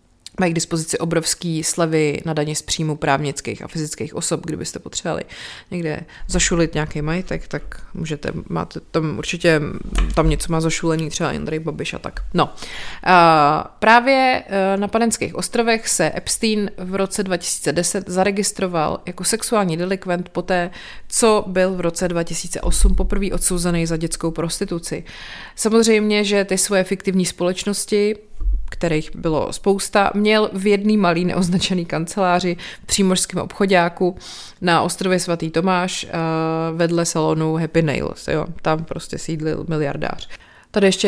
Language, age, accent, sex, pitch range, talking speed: Czech, 30-49, native, female, 165-195 Hz, 135 wpm